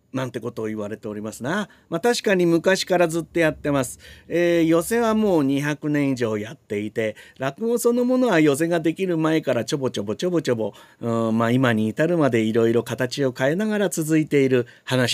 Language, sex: Japanese, male